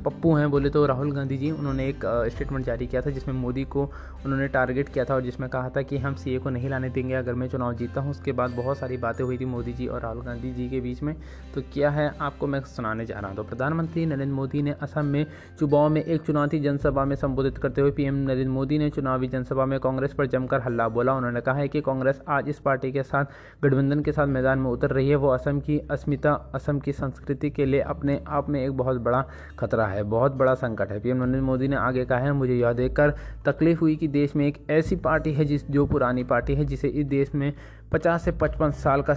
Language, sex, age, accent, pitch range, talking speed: Hindi, male, 20-39, native, 130-145 Hz, 250 wpm